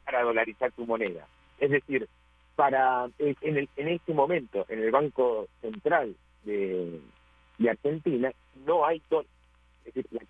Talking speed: 140 wpm